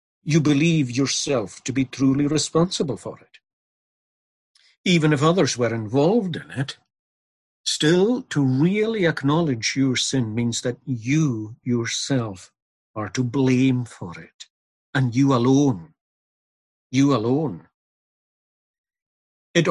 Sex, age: male, 60-79